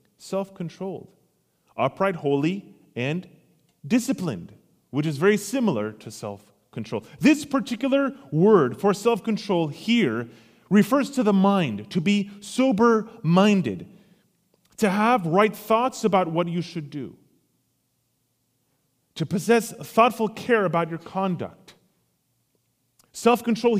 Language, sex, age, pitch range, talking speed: English, male, 30-49, 160-220 Hz, 105 wpm